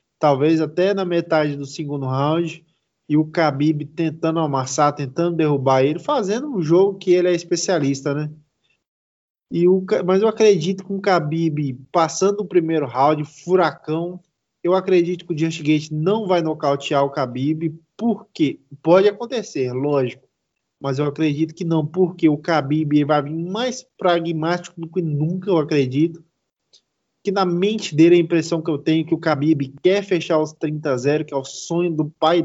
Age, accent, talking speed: 20-39, Brazilian, 165 wpm